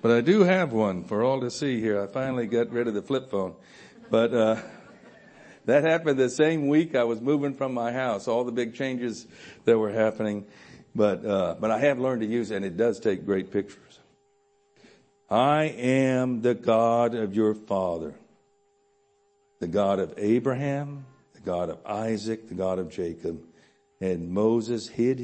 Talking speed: 180 wpm